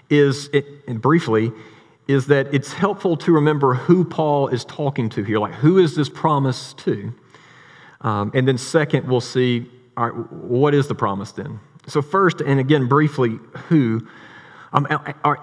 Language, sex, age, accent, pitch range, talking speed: English, male, 40-59, American, 130-160 Hz, 165 wpm